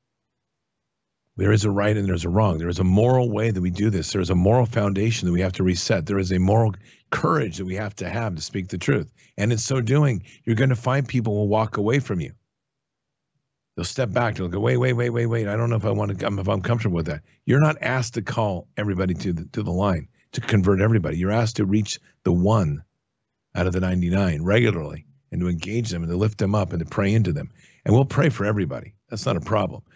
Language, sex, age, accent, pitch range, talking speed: English, male, 50-69, American, 95-120 Hz, 250 wpm